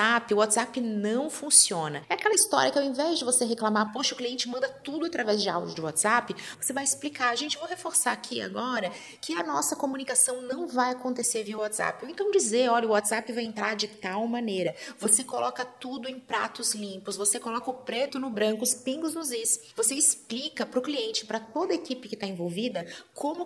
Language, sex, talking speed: Portuguese, female, 205 wpm